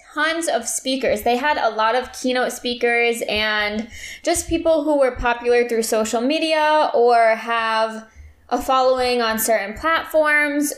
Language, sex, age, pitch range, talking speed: English, female, 20-39, 225-285 Hz, 145 wpm